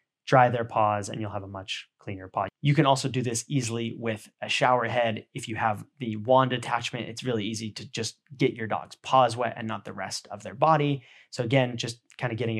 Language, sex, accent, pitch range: English, male, American, 110-140 Hz